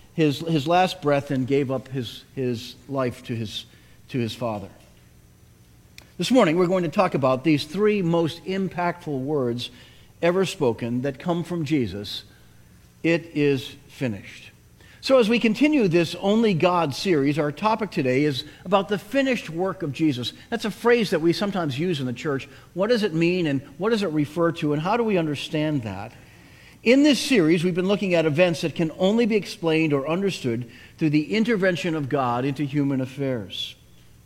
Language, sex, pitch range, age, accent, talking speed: English, male, 140-185 Hz, 50-69, American, 180 wpm